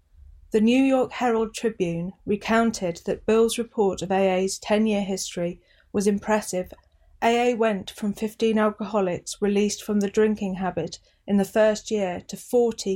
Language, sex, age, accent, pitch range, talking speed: English, female, 40-59, British, 180-215 Hz, 140 wpm